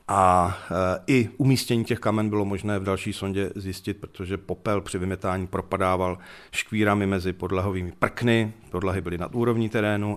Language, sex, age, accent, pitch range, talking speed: Czech, male, 40-59, native, 95-110 Hz, 150 wpm